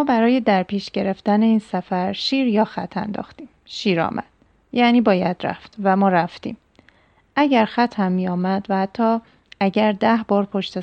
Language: Persian